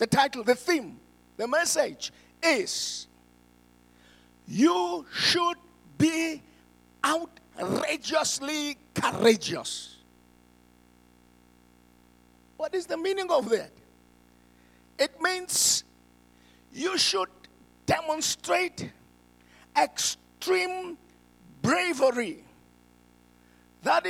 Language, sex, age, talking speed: English, male, 50-69, 65 wpm